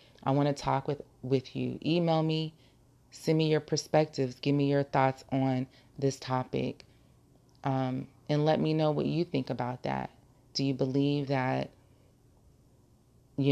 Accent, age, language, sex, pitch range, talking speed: American, 30-49, English, female, 125-145 Hz, 155 wpm